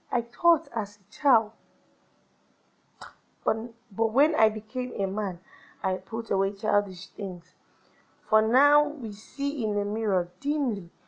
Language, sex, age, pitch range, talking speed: English, female, 20-39, 195-235 Hz, 135 wpm